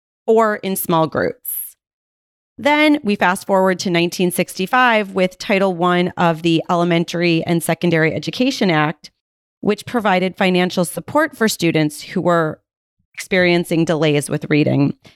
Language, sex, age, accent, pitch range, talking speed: English, female, 30-49, American, 165-225 Hz, 125 wpm